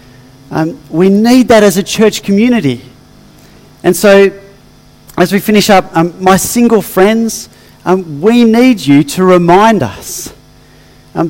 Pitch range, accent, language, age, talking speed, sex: 145-185 Hz, Australian, English, 40-59, 140 wpm, male